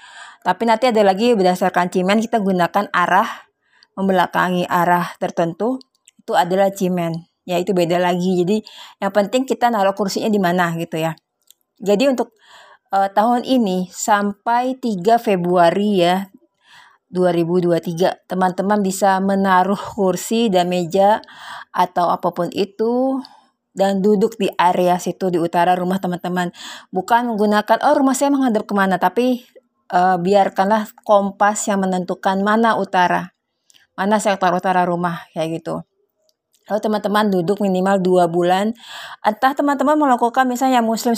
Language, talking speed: Indonesian, 130 wpm